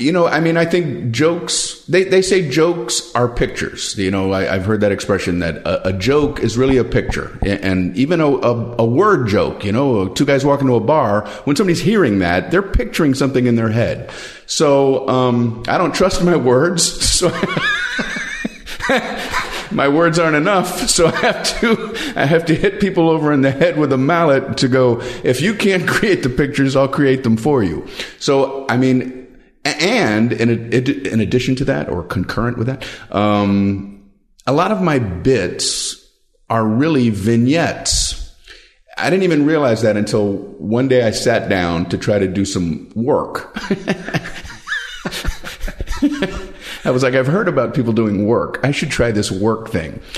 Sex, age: male, 50-69